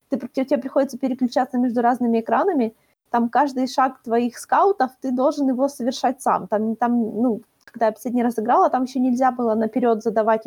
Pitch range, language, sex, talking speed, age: 225-280 Hz, Ukrainian, female, 165 wpm, 20-39